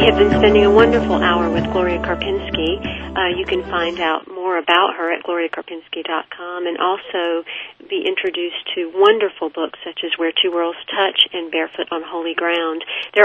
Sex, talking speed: female, 175 wpm